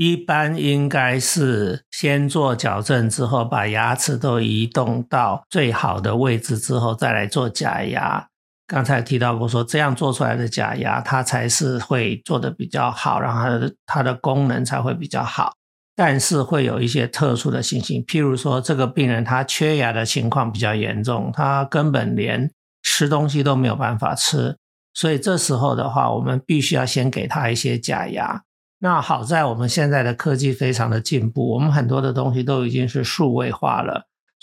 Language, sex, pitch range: Chinese, male, 120-145 Hz